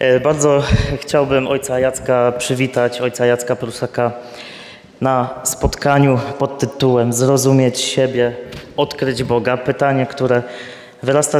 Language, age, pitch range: Polish, 20-39, 120-140 Hz